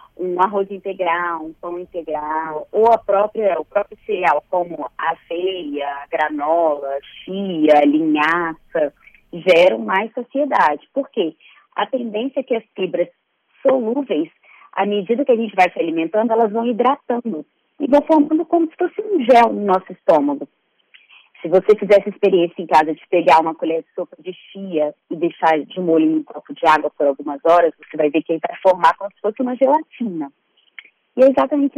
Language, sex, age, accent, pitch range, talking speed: Portuguese, female, 20-39, Brazilian, 160-245 Hz, 180 wpm